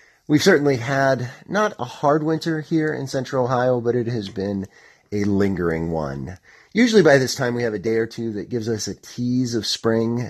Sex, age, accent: male, 30-49, American